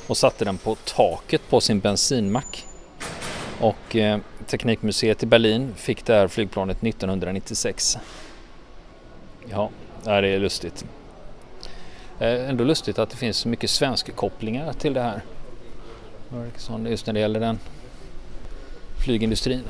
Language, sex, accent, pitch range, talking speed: Swedish, male, native, 100-120 Hz, 120 wpm